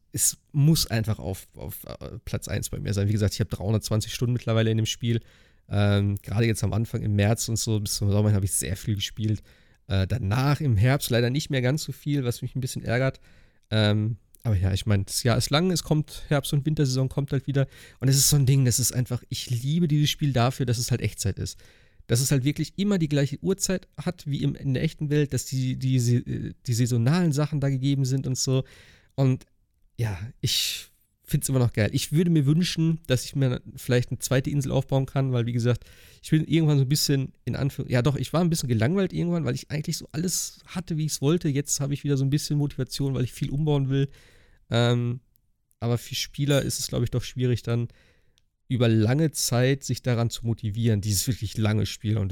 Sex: male